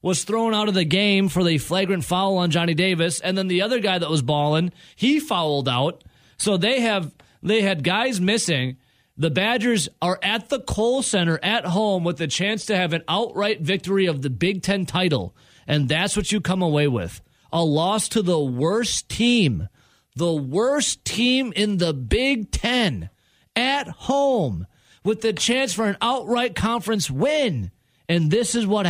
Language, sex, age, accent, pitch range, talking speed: English, male, 40-59, American, 155-215 Hz, 180 wpm